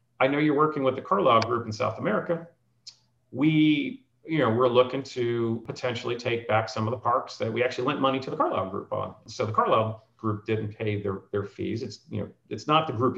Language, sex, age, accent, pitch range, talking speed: English, male, 40-59, American, 105-130 Hz, 230 wpm